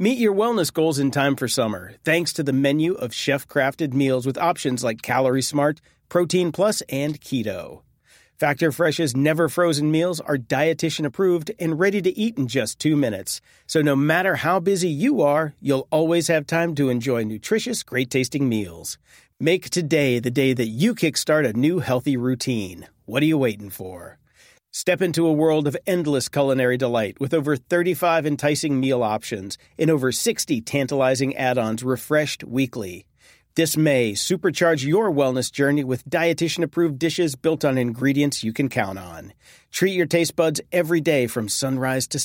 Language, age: English, 40-59